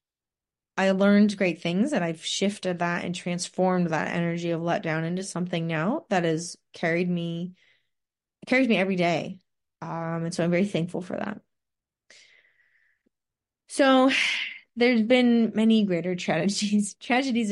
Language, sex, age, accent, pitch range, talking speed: English, female, 20-39, American, 165-200 Hz, 135 wpm